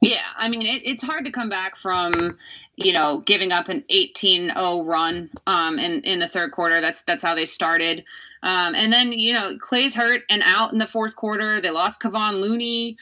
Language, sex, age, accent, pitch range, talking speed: English, female, 20-39, American, 185-235 Hz, 205 wpm